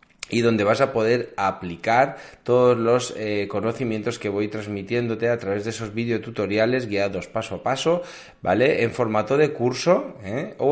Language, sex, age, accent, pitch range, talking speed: Spanish, male, 20-39, Spanish, 100-125 Hz, 155 wpm